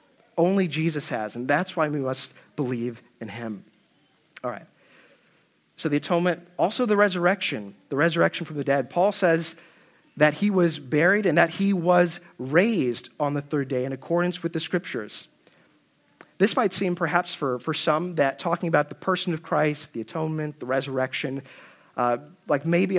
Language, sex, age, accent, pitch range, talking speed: English, male, 40-59, American, 135-170 Hz, 170 wpm